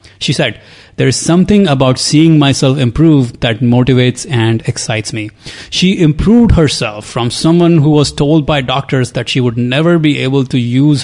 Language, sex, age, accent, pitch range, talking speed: English, male, 30-49, Indian, 120-150 Hz, 175 wpm